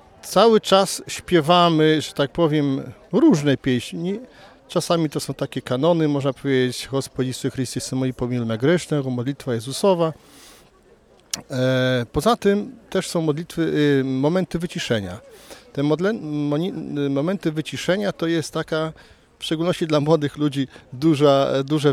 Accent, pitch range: native, 130-160 Hz